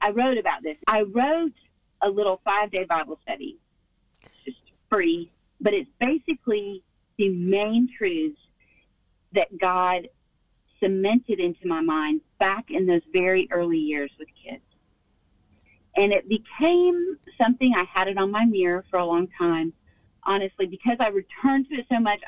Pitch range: 185-275 Hz